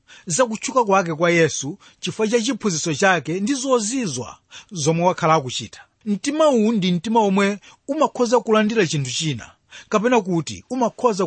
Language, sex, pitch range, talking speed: English, male, 150-225 Hz, 120 wpm